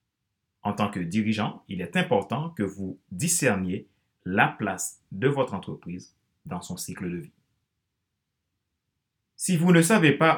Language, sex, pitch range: French, male, 95-130 Hz